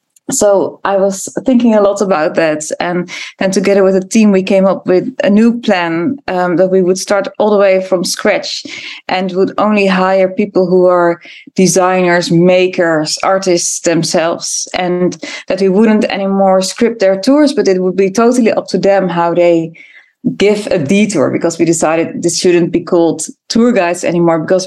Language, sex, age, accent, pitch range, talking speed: English, female, 20-39, Dutch, 170-215 Hz, 180 wpm